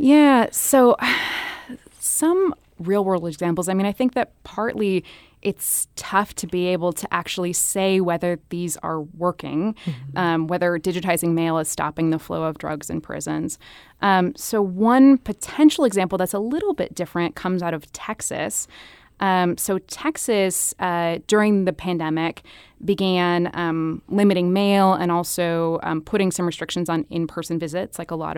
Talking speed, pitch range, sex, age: 150 wpm, 170-200 Hz, female, 20-39